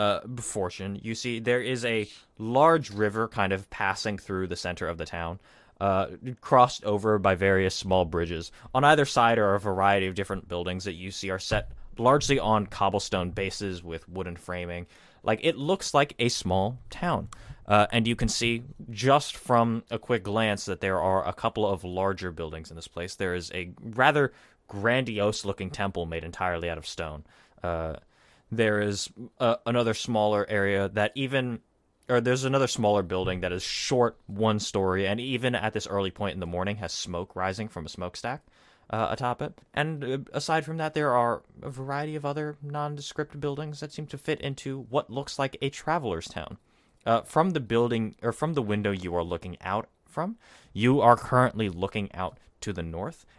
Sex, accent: male, American